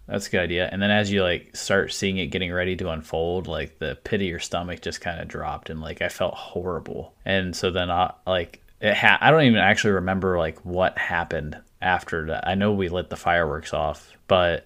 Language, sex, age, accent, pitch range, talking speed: English, male, 20-39, American, 85-100 Hz, 230 wpm